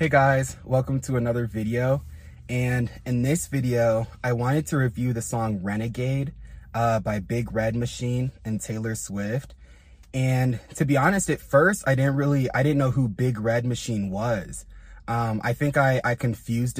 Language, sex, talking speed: English, male, 170 wpm